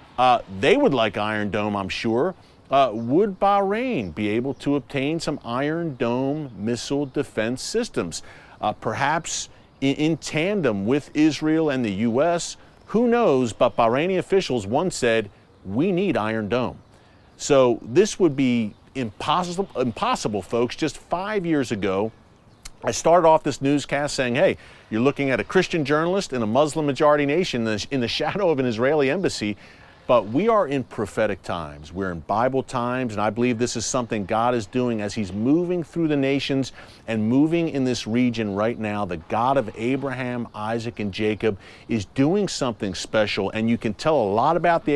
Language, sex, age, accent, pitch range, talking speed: English, male, 40-59, American, 110-150 Hz, 170 wpm